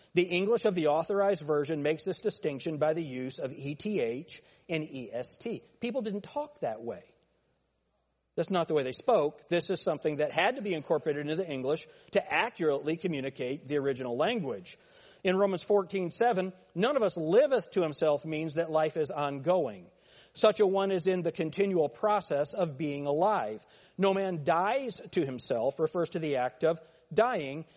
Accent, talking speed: American, 175 wpm